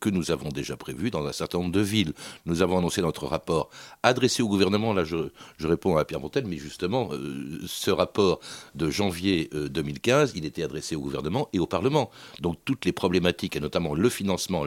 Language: French